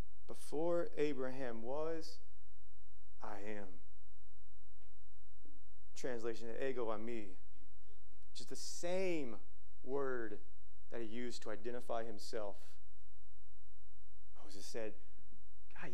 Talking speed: 85 wpm